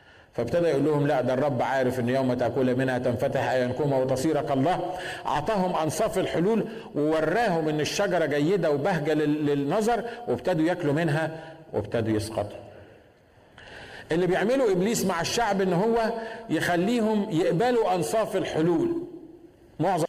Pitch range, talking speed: 150-195 Hz, 120 wpm